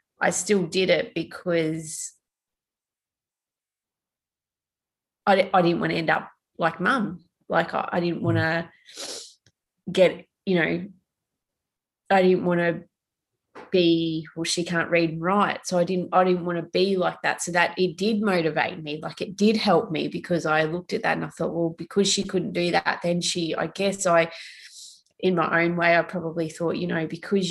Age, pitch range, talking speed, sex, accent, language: 20-39, 160-180 Hz, 180 wpm, female, Australian, English